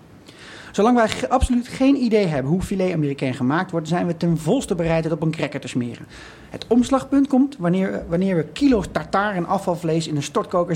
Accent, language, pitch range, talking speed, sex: Dutch, Dutch, 145-195 Hz, 205 wpm, male